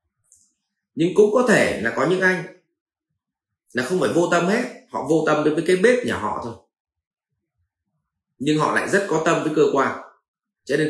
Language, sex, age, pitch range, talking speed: Vietnamese, male, 30-49, 125-205 Hz, 195 wpm